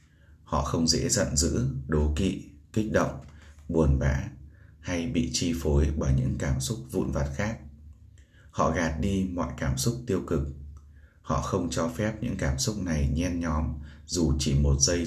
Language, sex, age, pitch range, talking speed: Vietnamese, male, 20-39, 70-85 Hz, 175 wpm